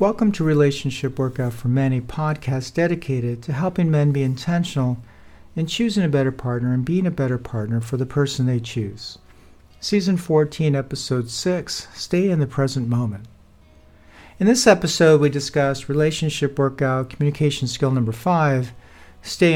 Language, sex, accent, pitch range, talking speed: English, male, American, 130-170 Hz, 155 wpm